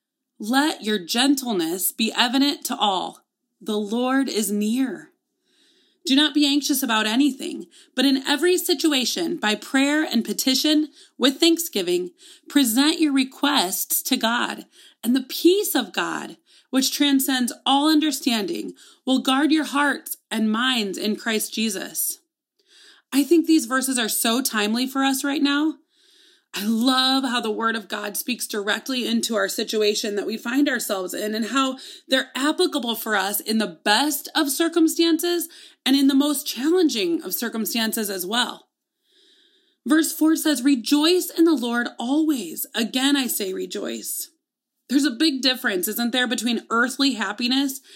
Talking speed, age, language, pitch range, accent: 150 wpm, 30-49, English, 230-315 Hz, American